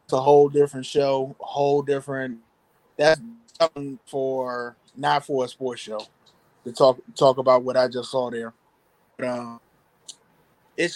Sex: male